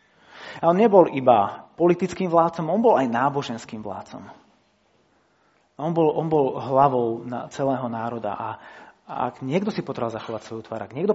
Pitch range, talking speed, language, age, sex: 125-165 Hz, 160 wpm, Slovak, 30-49, male